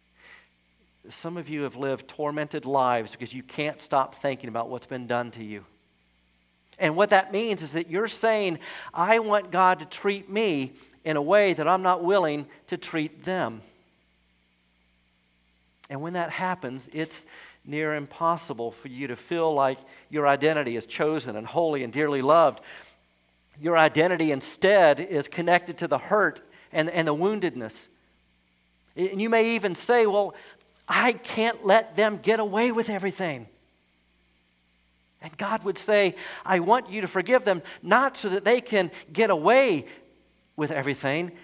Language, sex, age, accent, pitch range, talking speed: English, male, 50-69, American, 110-175 Hz, 155 wpm